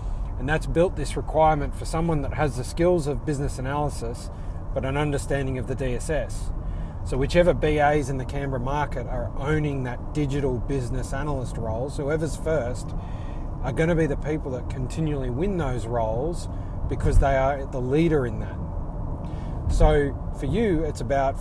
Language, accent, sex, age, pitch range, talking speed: English, Australian, male, 30-49, 90-140 Hz, 165 wpm